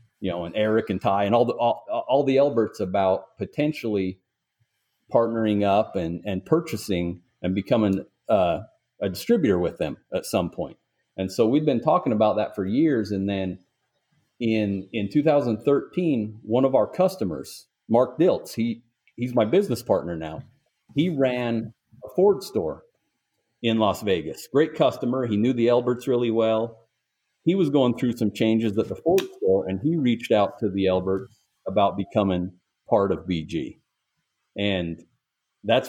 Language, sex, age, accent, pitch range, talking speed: English, male, 40-59, American, 95-120 Hz, 160 wpm